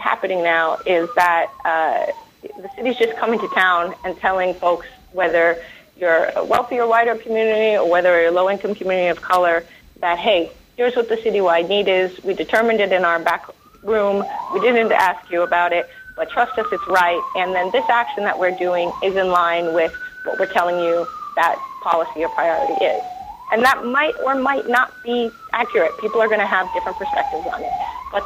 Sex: female